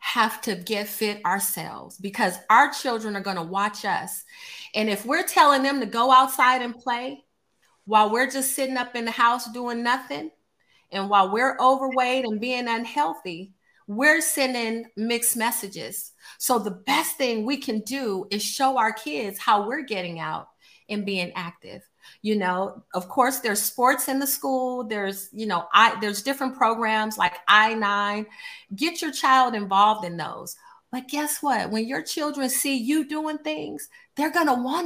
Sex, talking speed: female, 170 wpm